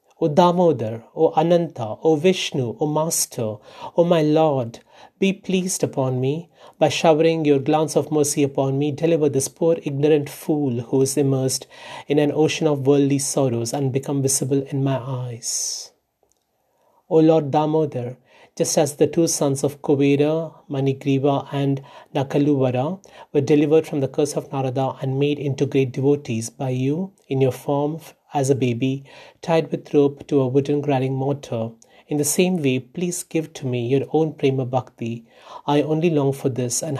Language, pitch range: Hindi, 135-155 Hz